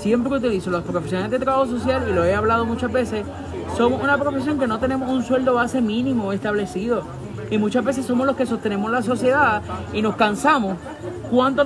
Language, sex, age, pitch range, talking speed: Spanish, male, 20-39, 195-250 Hz, 195 wpm